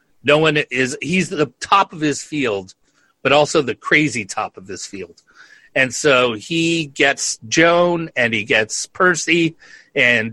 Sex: male